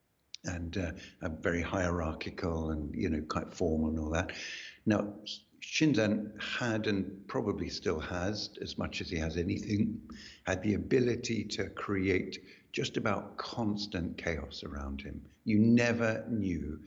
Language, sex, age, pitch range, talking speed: English, male, 60-79, 85-110 Hz, 140 wpm